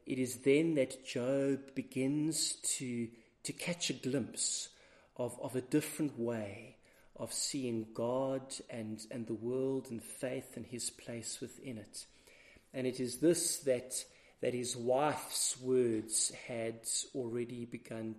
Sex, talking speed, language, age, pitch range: male, 140 wpm, English, 40-59, 115-135 Hz